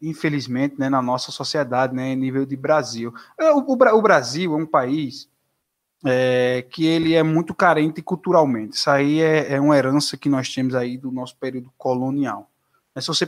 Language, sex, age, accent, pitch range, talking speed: Portuguese, male, 20-39, Brazilian, 140-180 Hz, 185 wpm